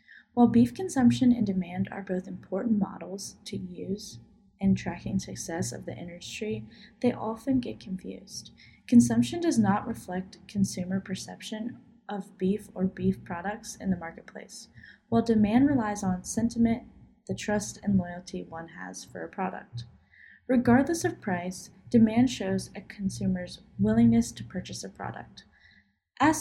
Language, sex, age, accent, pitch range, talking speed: English, female, 20-39, American, 175-230 Hz, 140 wpm